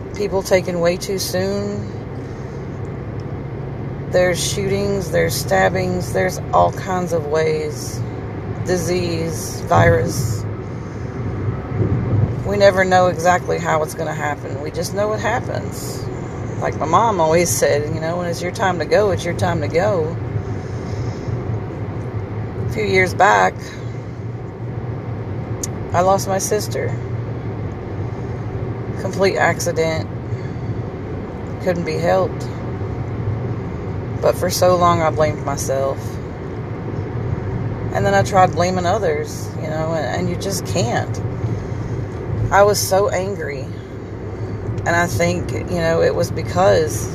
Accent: American